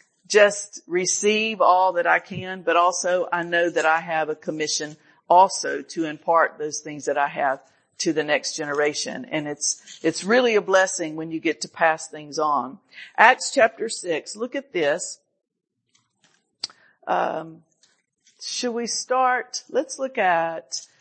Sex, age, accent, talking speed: female, 50-69, American, 150 wpm